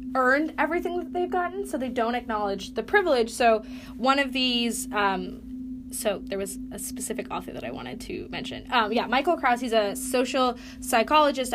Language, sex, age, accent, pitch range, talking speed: English, female, 10-29, American, 220-260 Hz, 180 wpm